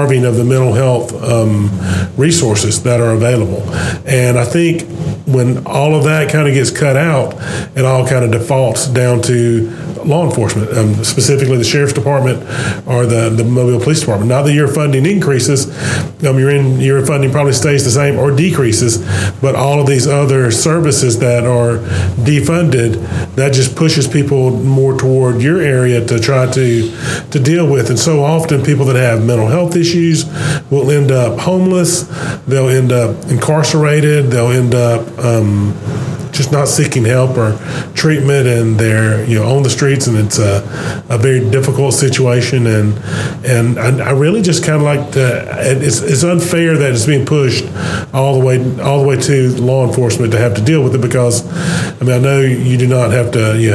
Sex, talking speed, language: male, 185 wpm, English